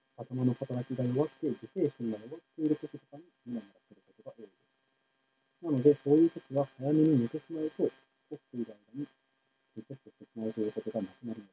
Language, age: Japanese, 40-59